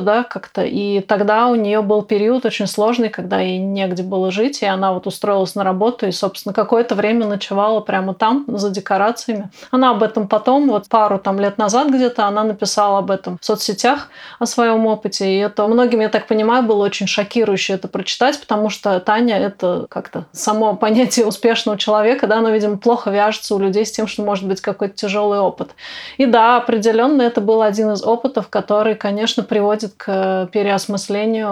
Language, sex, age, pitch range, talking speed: Russian, female, 20-39, 200-230 Hz, 185 wpm